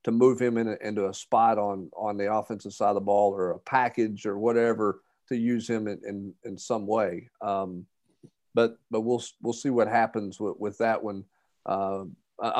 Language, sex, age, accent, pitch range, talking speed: English, male, 50-69, American, 105-120 Hz, 200 wpm